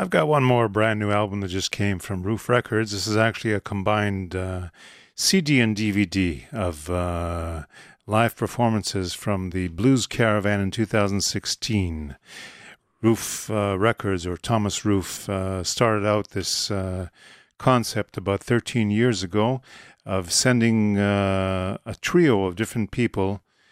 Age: 50-69